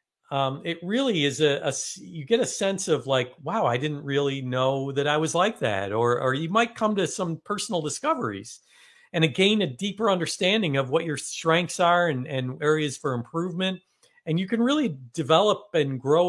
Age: 50-69